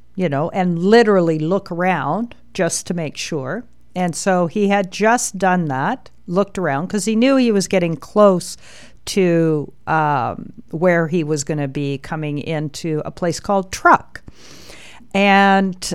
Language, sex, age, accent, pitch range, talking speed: English, female, 50-69, American, 155-200 Hz, 155 wpm